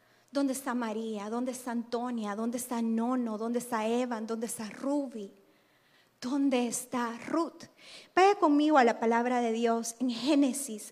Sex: female